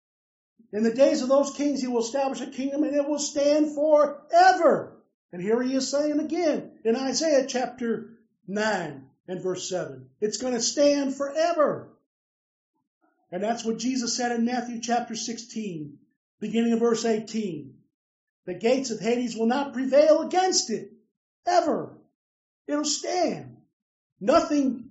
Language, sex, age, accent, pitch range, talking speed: English, male, 50-69, American, 220-280 Hz, 145 wpm